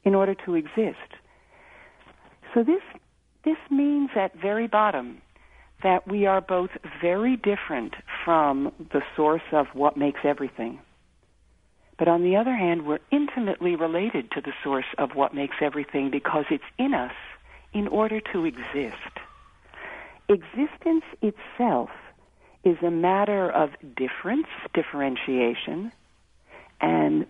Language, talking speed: English, 125 wpm